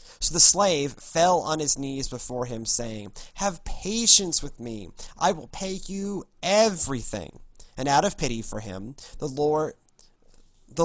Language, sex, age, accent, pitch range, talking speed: English, male, 30-49, American, 120-175 Hz, 155 wpm